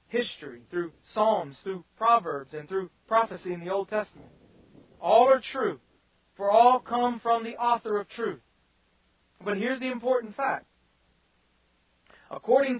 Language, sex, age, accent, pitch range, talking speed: English, male, 40-59, American, 165-230 Hz, 135 wpm